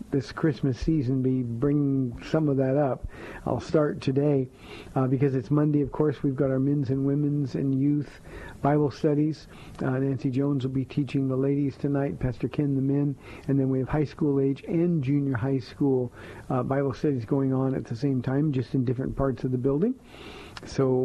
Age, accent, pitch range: 50-69, American, 130-150 Hz